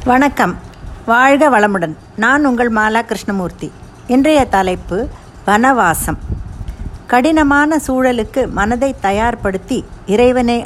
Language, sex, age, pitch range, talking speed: Tamil, female, 50-69, 190-250 Hz, 85 wpm